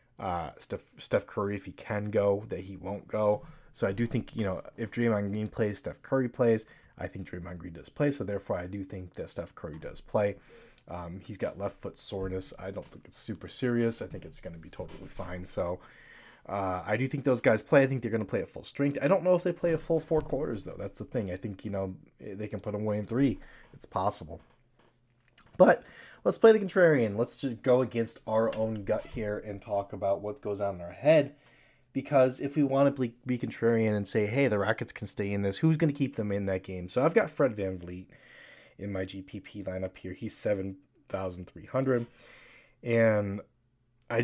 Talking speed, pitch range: 225 wpm, 100-125 Hz